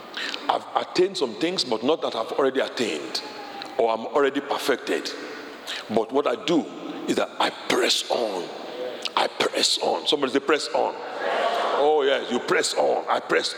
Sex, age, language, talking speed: male, 50-69, English, 165 wpm